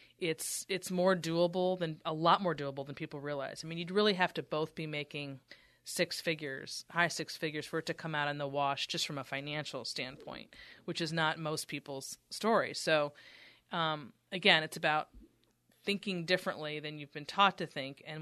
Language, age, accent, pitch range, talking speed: English, 30-49, American, 145-175 Hz, 195 wpm